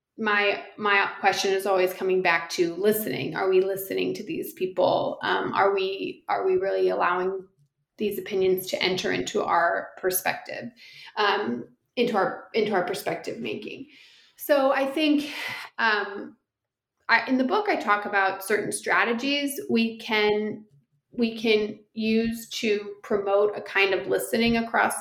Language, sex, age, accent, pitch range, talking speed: English, female, 30-49, American, 185-235 Hz, 145 wpm